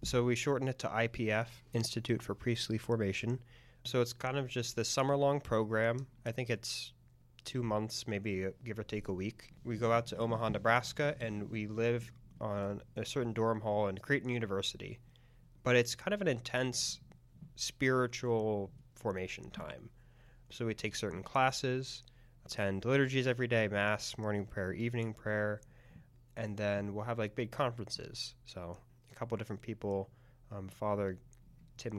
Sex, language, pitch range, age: male, English, 105-125 Hz, 20-39